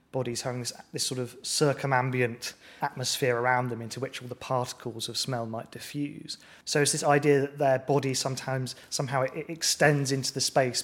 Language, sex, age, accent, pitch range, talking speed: English, male, 20-39, British, 125-150 Hz, 185 wpm